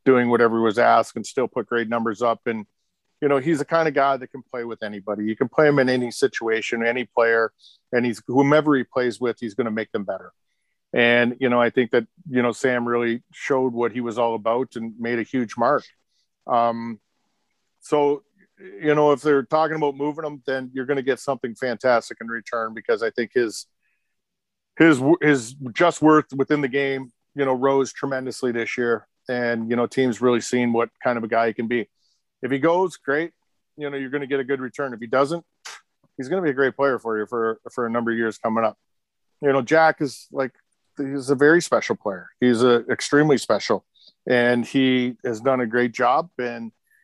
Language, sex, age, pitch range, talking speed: English, male, 50-69, 120-145 Hz, 220 wpm